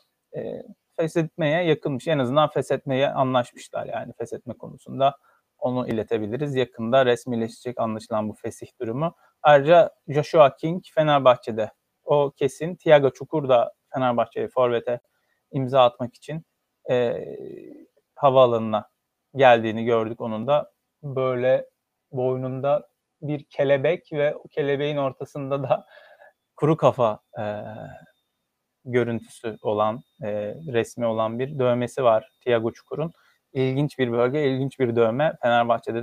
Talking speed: 110 wpm